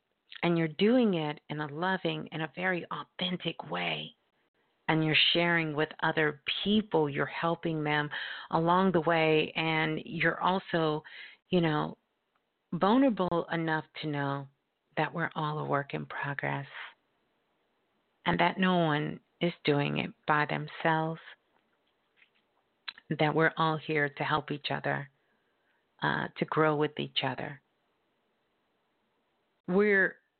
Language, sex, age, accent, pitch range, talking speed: English, female, 40-59, American, 150-180 Hz, 125 wpm